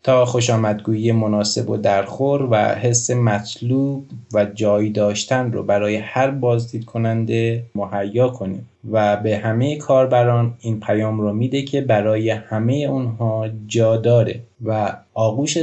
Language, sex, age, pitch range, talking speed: Persian, male, 20-39, 105-130 Hz, 130 wpm